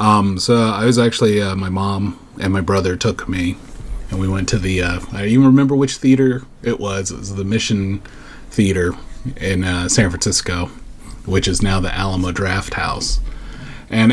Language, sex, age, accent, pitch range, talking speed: English, male, 30-49, American, 95-115 Hz, 185 wpm